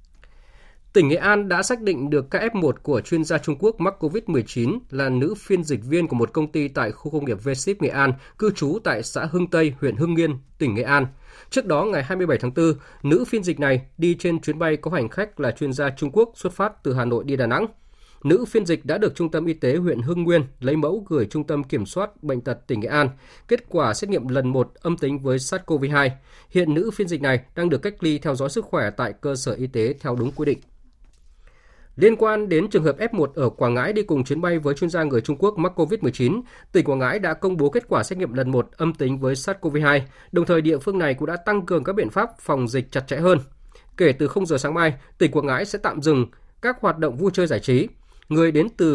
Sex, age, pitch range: male, 20-39, 130-175 Hz